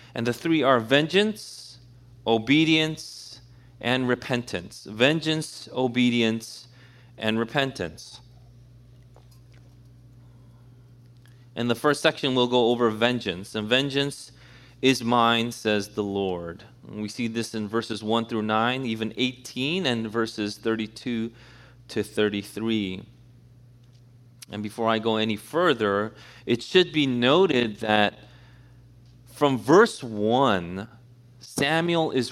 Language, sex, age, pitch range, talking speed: English, male, 30-49, 115-135 Hz, 110 wpm